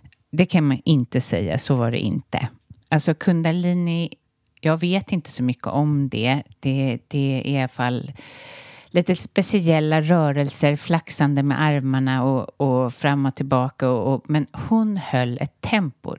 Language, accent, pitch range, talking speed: English, Swedish, 125-160 Hz, 150 wpm